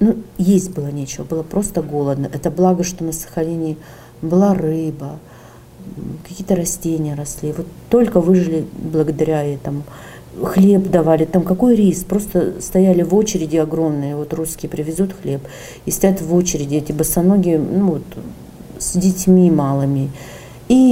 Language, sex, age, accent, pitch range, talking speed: Russian, female, 40-59, native, 155-195 Hz, 140 wpm